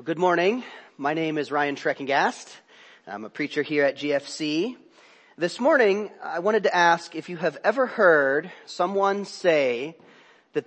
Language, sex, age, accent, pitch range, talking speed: English, male, 40-59, American, 155-240 Hz, 150 wpm